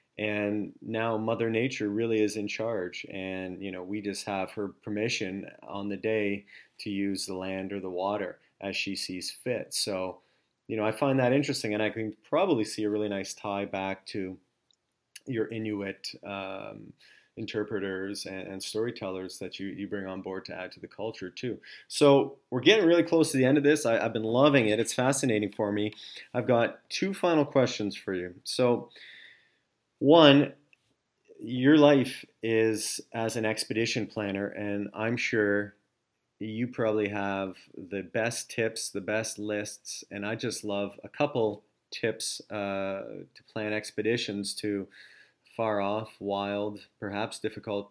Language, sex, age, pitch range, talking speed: English, male, 30-49, 100-115 Hz, 165 wpm